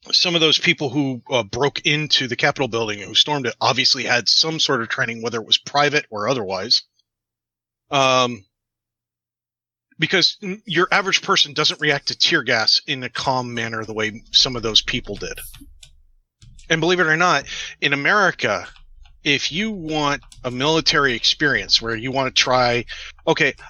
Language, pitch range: English, 120-170 Hz